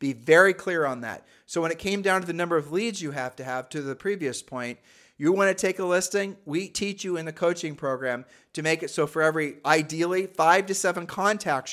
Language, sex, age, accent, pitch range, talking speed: English, male, 40-59, American, 145-180 Hz, 240 wpm